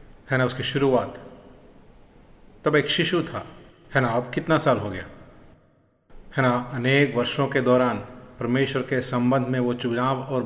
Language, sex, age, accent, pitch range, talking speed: Malayalam, male, 30-49, native, 125-155 Hz, 160 wpm